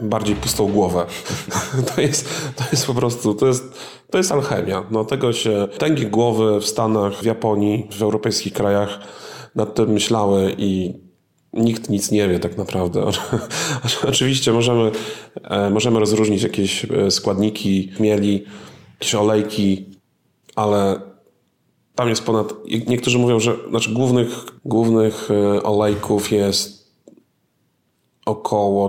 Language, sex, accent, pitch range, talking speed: Polish, male, native, 105-120 Hz, 125 wpm